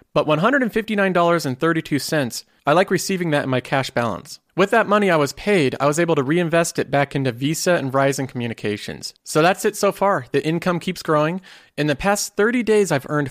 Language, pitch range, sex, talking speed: English, 130-175 Hz, male, 200 wpm